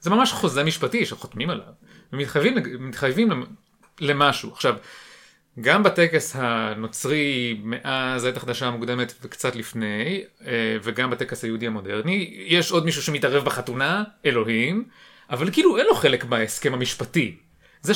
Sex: male